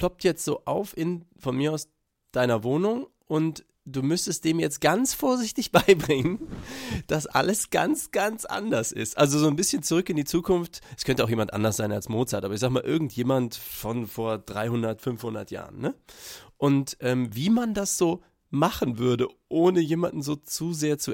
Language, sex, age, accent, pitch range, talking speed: German, male, 30-49, German, 115-155 Hz, 185 wpm